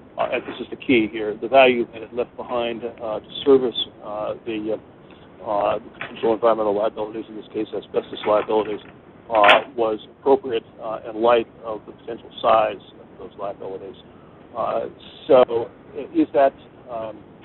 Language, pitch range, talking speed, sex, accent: English, 110-125 Hz, 160 wpm, male, American